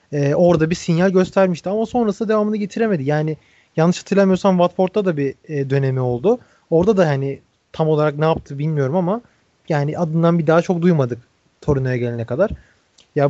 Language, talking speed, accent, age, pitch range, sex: Turkish, 160 wpm, native, 30-49, 145-180 Hz, male